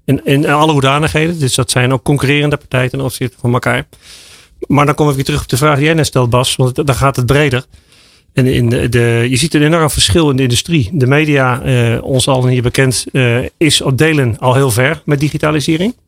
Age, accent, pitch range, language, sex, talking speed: 40-59, Dutch, 125-145 Hz, Dutch, male, 230 wpm